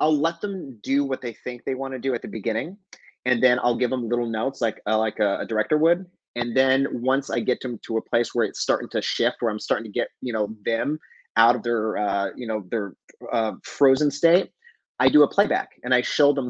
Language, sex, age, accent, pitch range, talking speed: English, male, 30-49, American, 120-150 Hz, 250 wpm